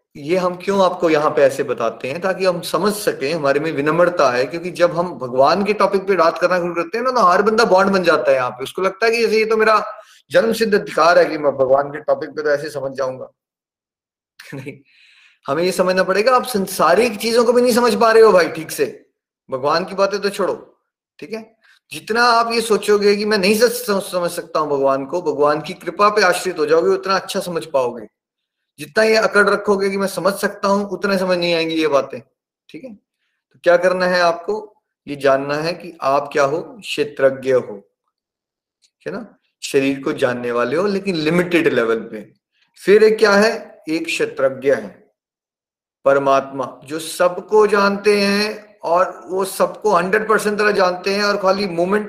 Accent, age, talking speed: native, 20-39, 200 wpm